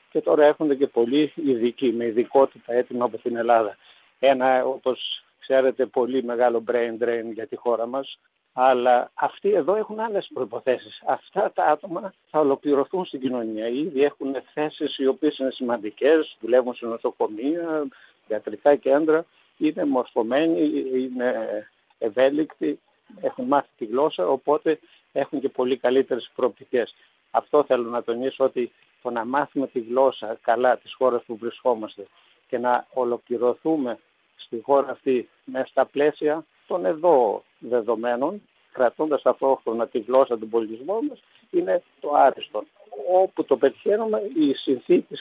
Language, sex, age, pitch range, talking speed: Greek, male, 60-79, 120-150 Hz, 140 wpm